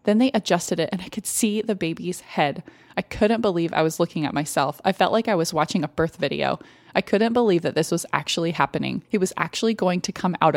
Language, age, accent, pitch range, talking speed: English, 20-39, American, 165-210 Hz, 245 wpm